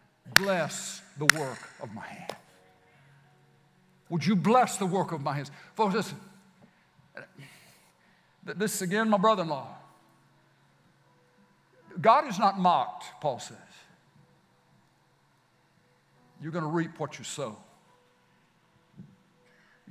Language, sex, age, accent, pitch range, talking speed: English, male, 60-79, American, 175-260 Hz, 95 wpm